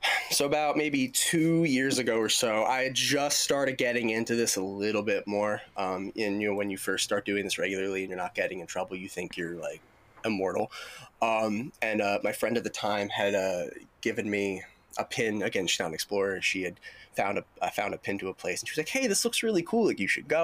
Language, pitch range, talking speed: English, 95-135 Hz, 245 wpm